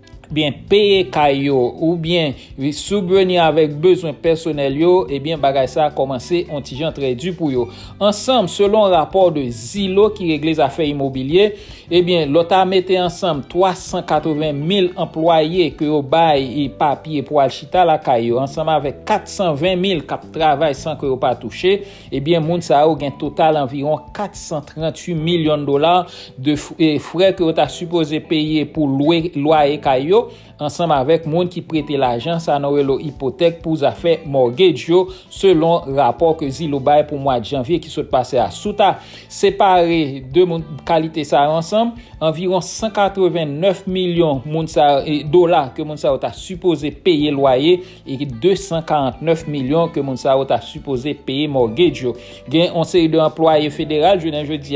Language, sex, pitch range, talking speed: English, male, 145-175 Hz, 155 wpm